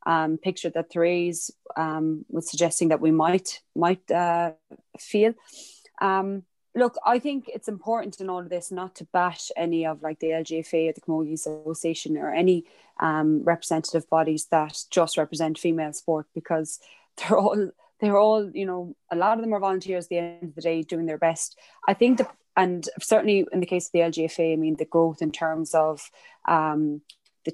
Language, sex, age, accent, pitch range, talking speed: English, female, 20-39, Irish, 160-185 Hz, 190 wpm